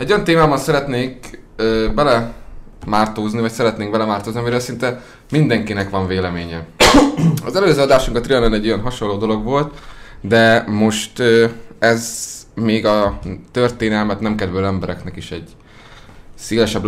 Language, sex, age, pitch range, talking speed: Hungarian, male, 20-39, 100-120 Hz, 130 wpm